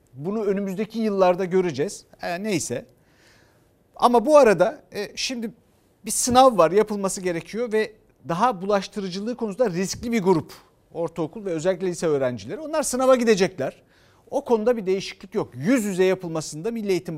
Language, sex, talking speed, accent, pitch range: Turkish, male, 145 wpm, native, 175-245 Hz